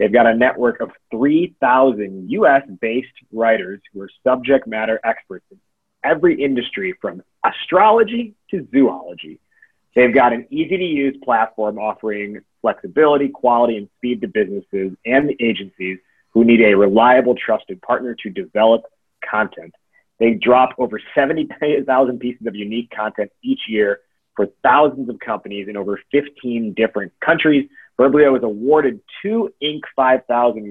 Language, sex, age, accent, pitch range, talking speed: English, male, 30-49, American, 110-145 Hz, 135 wpm